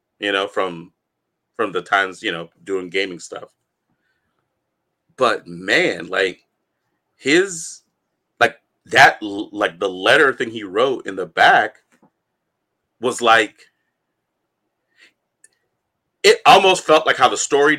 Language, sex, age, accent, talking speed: English, male, 30-49, American, 120 wpm